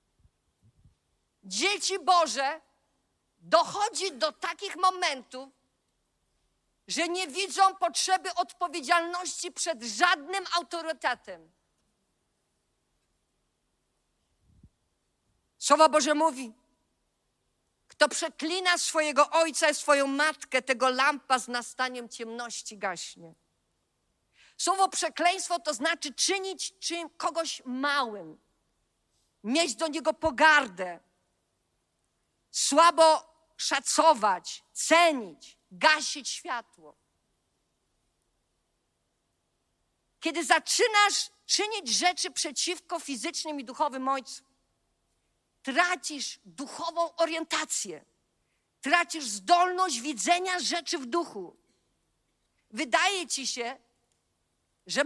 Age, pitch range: 50-69, 265-350 Hz